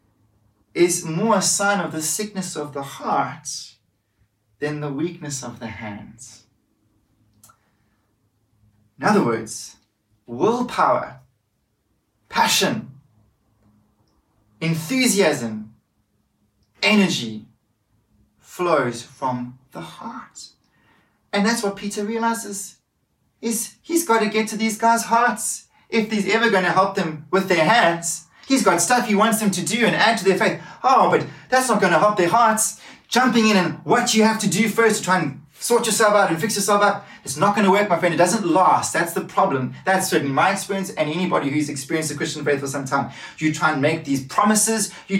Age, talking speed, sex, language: 30-49, 165 wpm, male, English